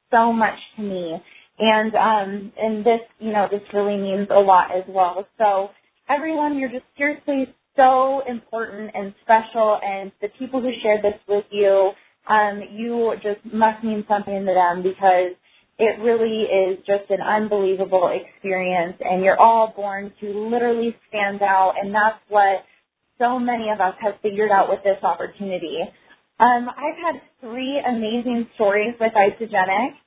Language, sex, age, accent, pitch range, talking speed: English, female, 20-39, American, 195-245 Hz, 160 wpm